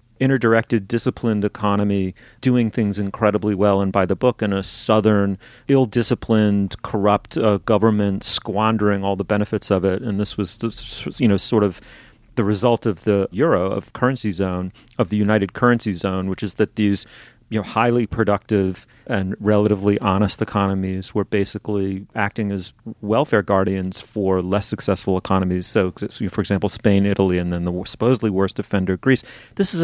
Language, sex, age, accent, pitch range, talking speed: English, male, 30-49, American, 100-120 Hz, 165 wpm